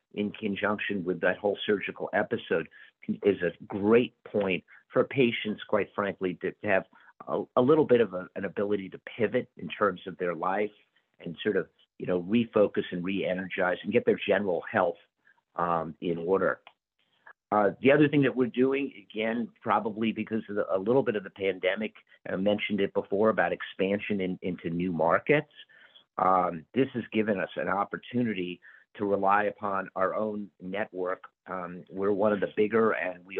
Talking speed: 175 wpm